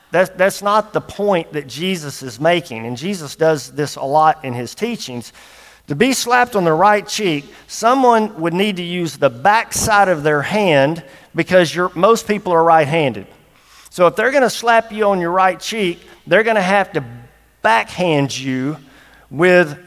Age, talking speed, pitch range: 50-69, 180 wpm, 155-210 Hz